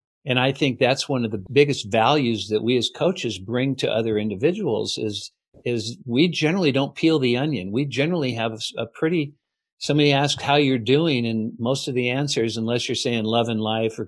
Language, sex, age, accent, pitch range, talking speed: English, male, 50-69, American, 115-145 Hz, 200 wpm